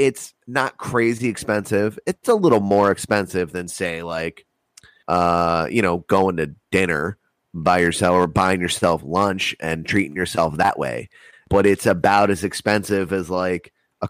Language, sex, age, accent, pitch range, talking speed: English, male, 30-49, American, 90-105 Hz, 160 wpm